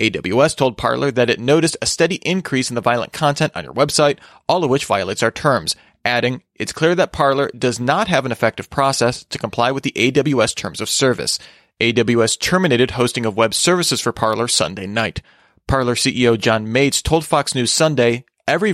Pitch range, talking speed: 115-145 Hz, 190 wpm